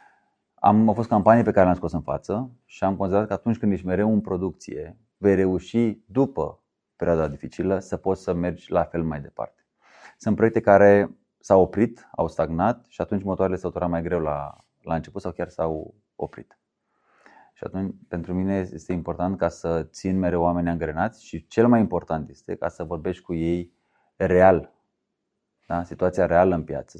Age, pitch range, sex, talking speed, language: 30-49, 85-100 Hz, male, 180 wpm, Romanian